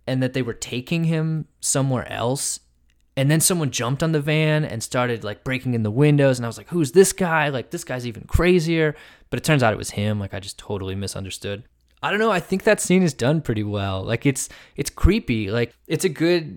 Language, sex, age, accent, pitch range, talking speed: English, male, 20-39, American, 95-125 Hz, 235 wpm